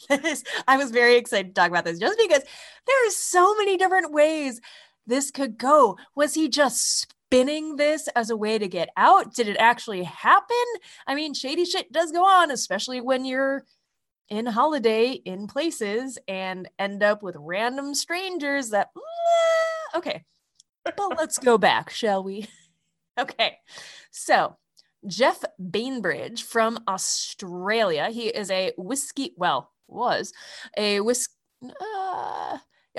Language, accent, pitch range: English, American, 195-305 Hz